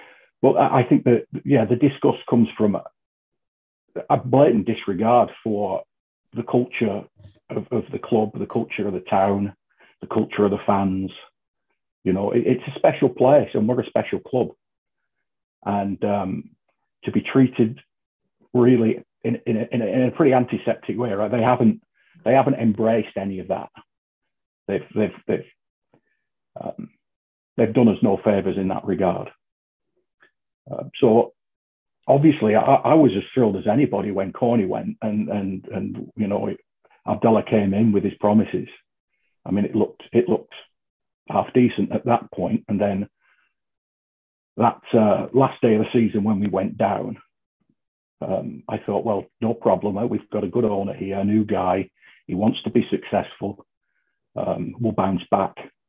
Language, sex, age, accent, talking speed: English, male, 40-59, British, 160 wpm